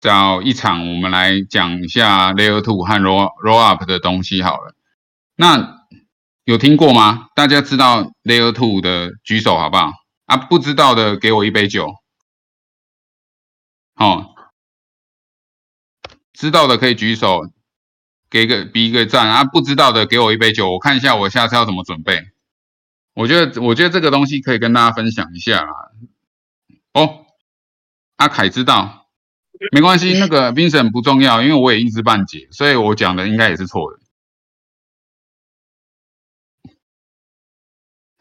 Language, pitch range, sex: Chinese, 100-135 Hz, male